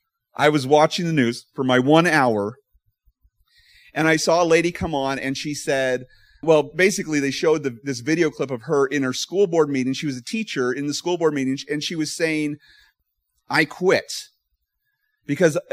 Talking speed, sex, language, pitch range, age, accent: 190 wpm, male, English, 125-170 Hz, 30-49, American